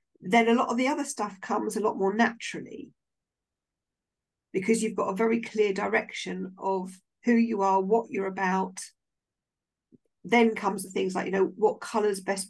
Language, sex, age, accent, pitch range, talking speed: English, female, 50-69, British, 190-240 Hz, 175 wpm